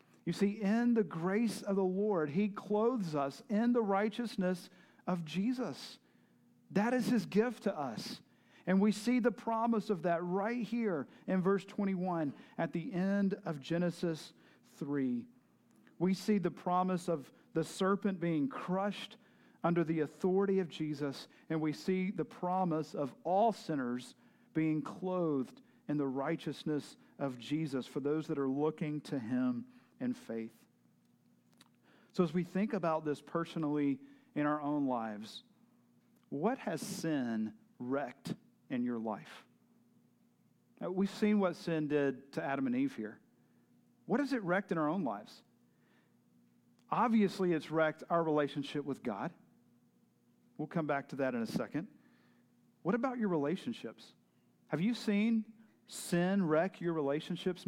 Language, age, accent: English, 50-69, American